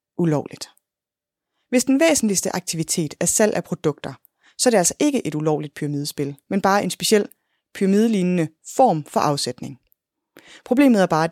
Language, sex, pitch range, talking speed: Danish, female, 155-210 Hz, 155 wpm